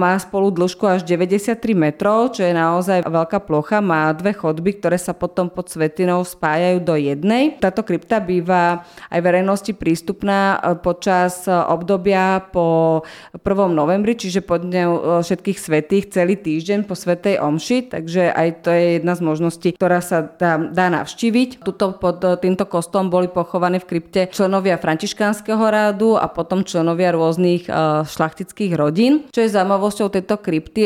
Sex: female